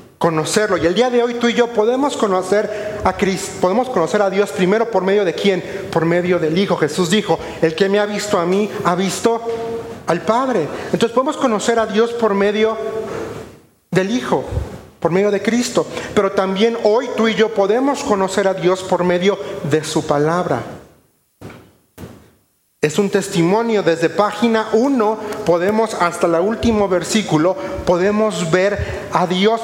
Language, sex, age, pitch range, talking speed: Spanish, male, 40-59, 175-215 Hz, 165 wpm